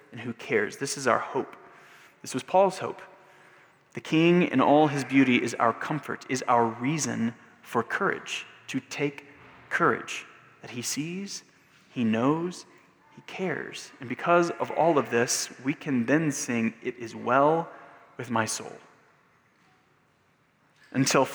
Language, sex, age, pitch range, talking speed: English, male, 30-49, 125-160 Hz, 145 wpm